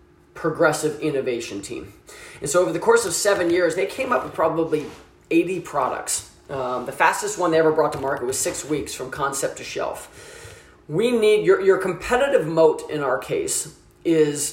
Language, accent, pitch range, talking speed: English, American, 145-195 Hz, 180 wpm